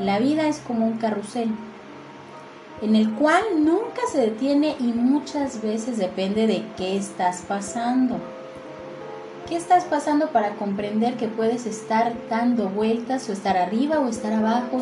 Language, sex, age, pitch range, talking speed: Spanish, female, 30-49, 205-275 Hz, 145 wpm